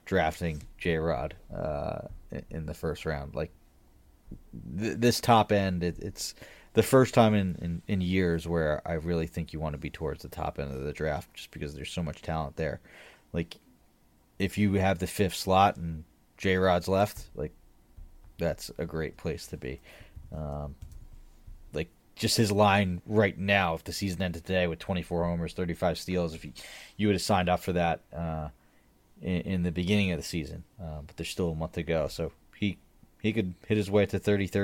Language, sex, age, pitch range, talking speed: English, male, 30-49, 80-100 Hz, 190 wpm